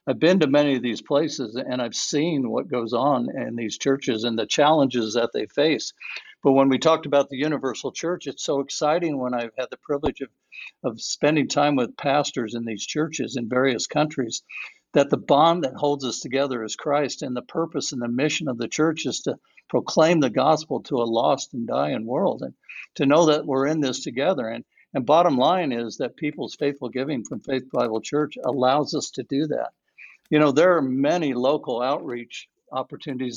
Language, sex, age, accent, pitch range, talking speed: English, male, 60-79, American, 125-150 Hz, 205 wpm